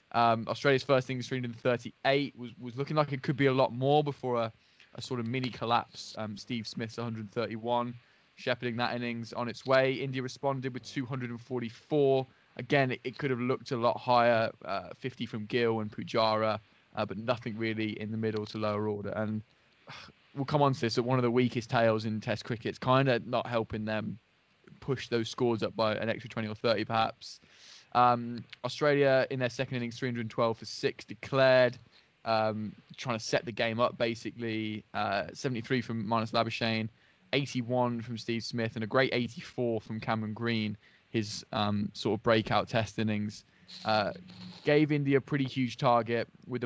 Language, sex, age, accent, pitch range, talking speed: English, male, 10-29, British, 110-130 Hz, 185 wpm